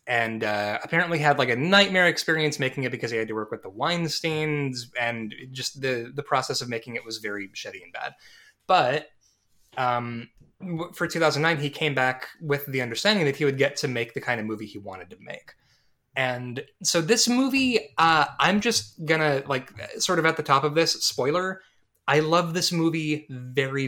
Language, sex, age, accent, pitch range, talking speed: English, male, 20-39, American, 115-160 Hz, 195 wpm